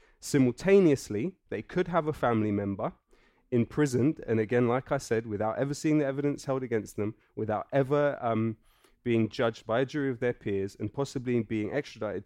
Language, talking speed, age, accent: English, 175 wpm, 20-39, British